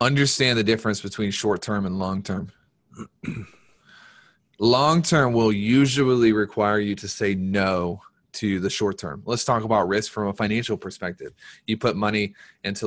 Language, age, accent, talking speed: English, 20-39, American, 140 wpm